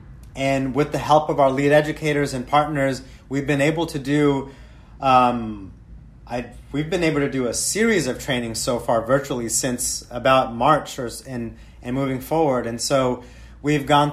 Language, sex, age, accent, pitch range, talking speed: English, male, 30-49, American, 125-145 Hz, 170 wpm